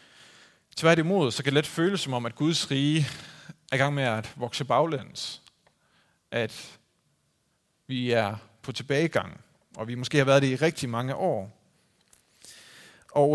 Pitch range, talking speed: 120-165 Hz, 155 wpm